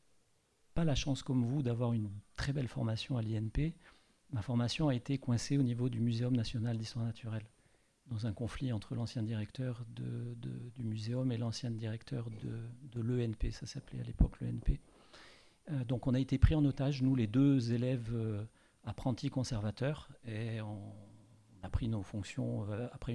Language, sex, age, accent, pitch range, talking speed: French, male, 40-59, French, 115-135 Hz, 170 wpm